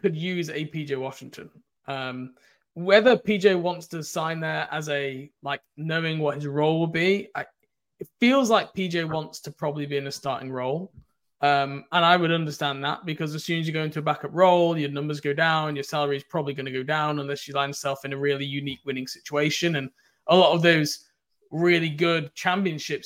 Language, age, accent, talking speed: English, 20-39, British, 205 wpm